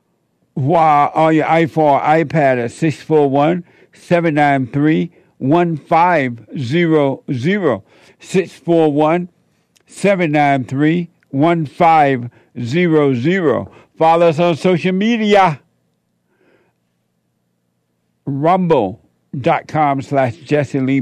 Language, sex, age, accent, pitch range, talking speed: English, male, 60-79, American, 125-170 Hz, 50 wpm